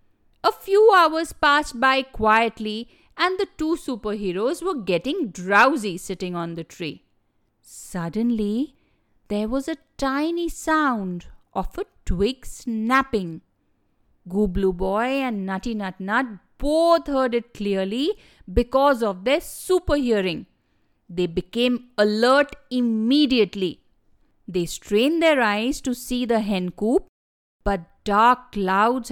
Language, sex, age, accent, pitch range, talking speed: English, female, 50-69, Indian, 200-280 Hz, 120 wpm